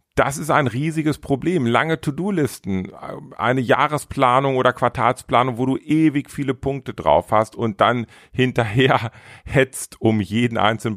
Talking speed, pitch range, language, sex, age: 135 wpm, 85-125 Hz, German, male, 40-59